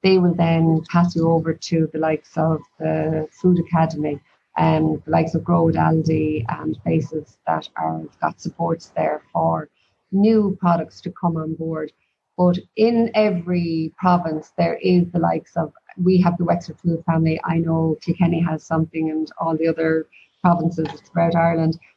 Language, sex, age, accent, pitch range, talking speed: English, female, 30-49, Irish, 160-180 Hz, 165 wpm